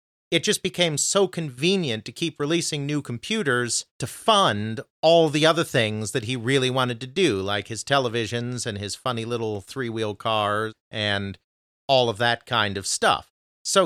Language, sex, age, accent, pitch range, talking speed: English, male, 40-59, American, 105-150 Hz, 170 wpm